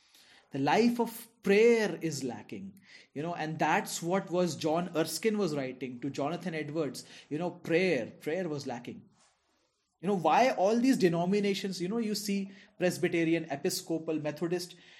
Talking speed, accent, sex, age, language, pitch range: 150 wpm, native, male, 30-49, Hindi, 145-195 Hz